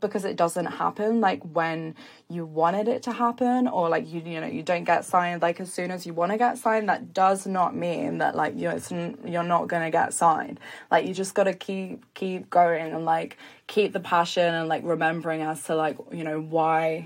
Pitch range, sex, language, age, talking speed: 165-190 Hz, female, English, 20-39, 220 wpm